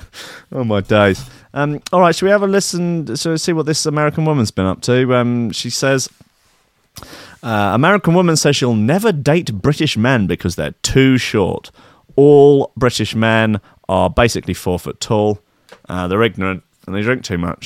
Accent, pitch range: British, 100-145 Hz